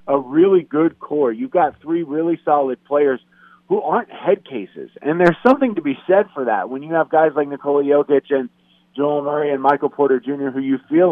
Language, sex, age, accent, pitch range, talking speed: English, male, 30-49, American, 125-155 Hz, 210 wpm